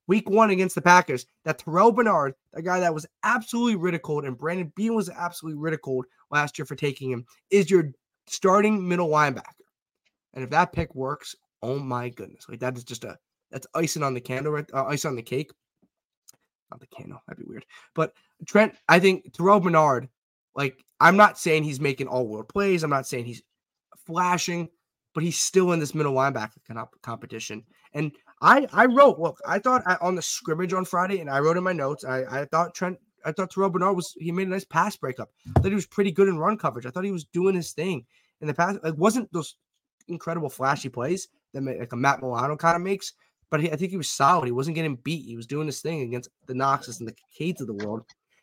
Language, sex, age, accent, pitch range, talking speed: English, male, 20-39, American, 135-180 Hz, 225 wpm